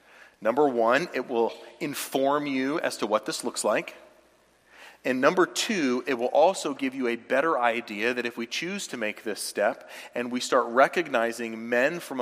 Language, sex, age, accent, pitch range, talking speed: English, male, 40-59, American, 115-145 Hz, 180 wpm